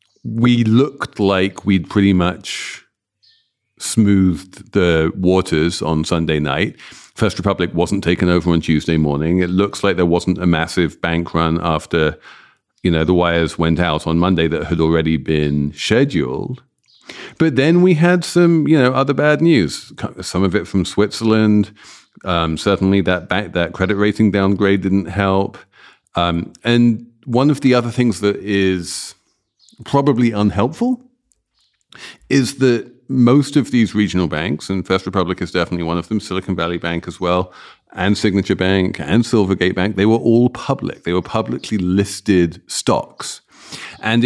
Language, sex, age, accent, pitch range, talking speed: English, male, 50-69, British, 85-120 Hz, 155 wpm